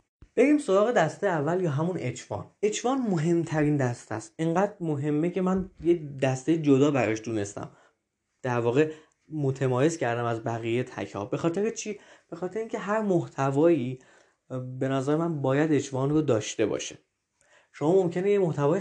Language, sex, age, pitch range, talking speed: Persian, male, 20-39, 140-185 Hz, 150 wpm